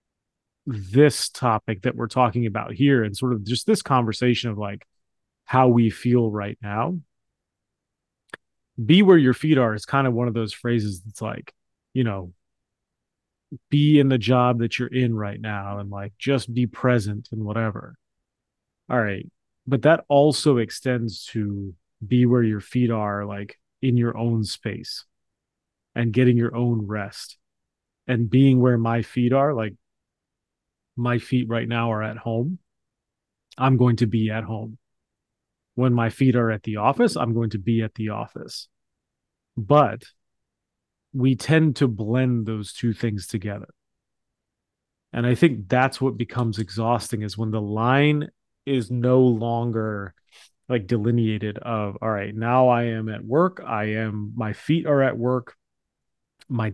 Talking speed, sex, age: 160 wpm, male, 30-49